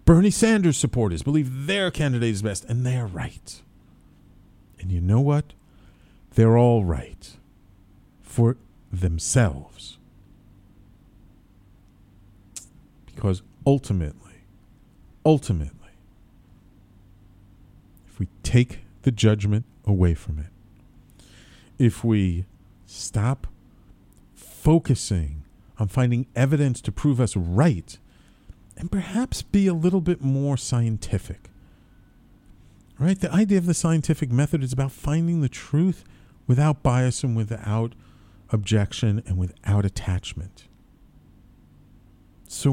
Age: 40-59